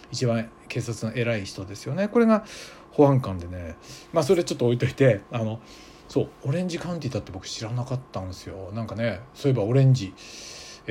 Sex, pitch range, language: male, 110-170 Hz, Japanese